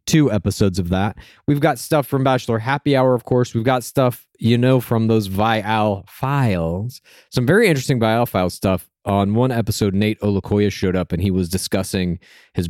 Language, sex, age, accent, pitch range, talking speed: English, male, 30-49, American, 110-150 Hz, 190 wpm